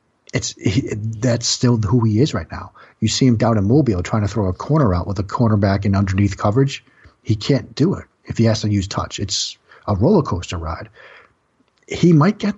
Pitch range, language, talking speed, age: 100-125 Hz, English, 210 wpm, 40-59